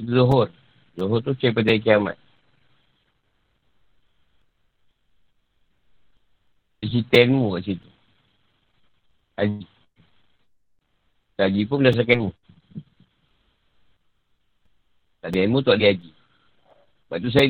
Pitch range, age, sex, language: 100-135 Hz, 50-69, male, Malay